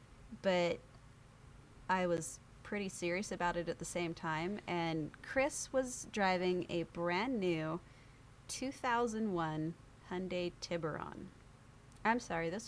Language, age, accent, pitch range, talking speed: English, 30-49, American, 155-190 Hz, 115 wpm